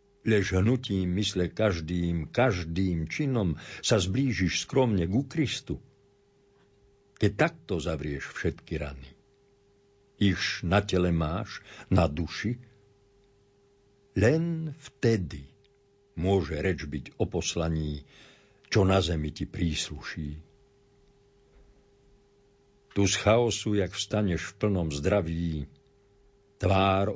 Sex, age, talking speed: male, 60-79, 95 wpm